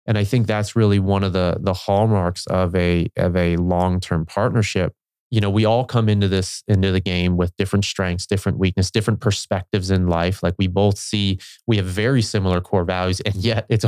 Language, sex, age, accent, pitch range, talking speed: English, male, 20-39, American, 90-110 Hz, 210 wpm